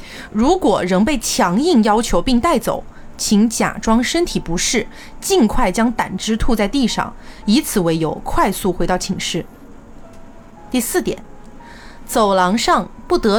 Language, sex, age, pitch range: Chinese, female, 30-49, 190-260 Hz